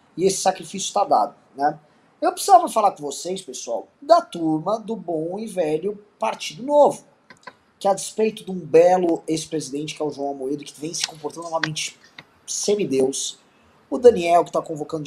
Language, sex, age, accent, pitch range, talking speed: Portuguese, male, 20-39, Brazilian, 160-220 Hz, 170 wpm